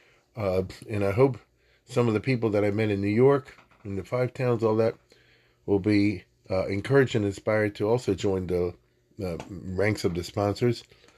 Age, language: 40-59, English